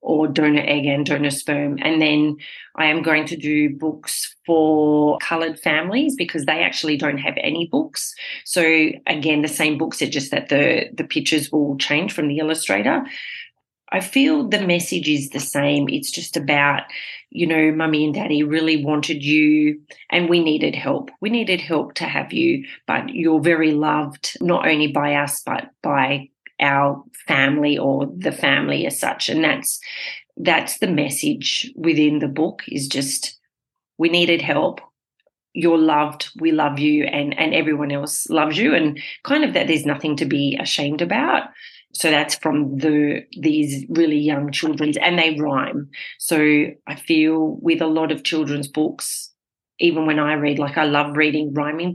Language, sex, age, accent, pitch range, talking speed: English, female, 30-49, Australian, 145-165 Hz, 170 wpm